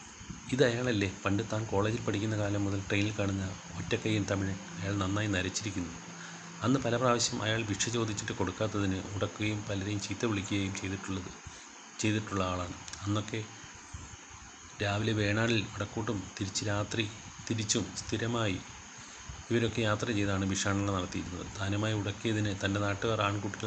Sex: male